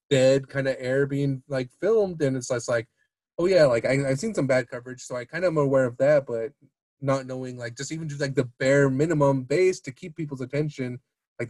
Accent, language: American, English